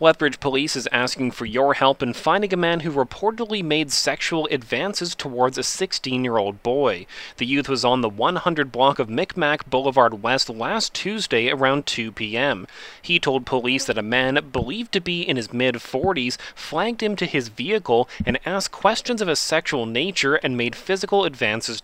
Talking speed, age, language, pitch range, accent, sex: 175 wpm, 30-49, English, 125-170 Hz, American, male